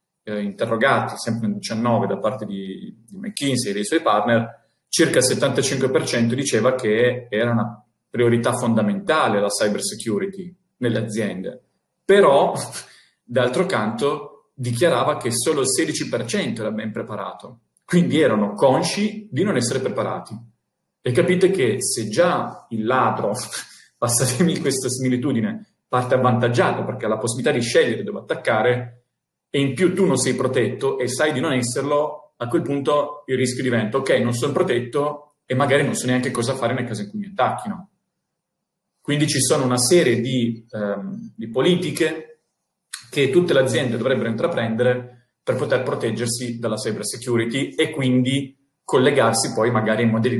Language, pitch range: Italian, 115-155 Hz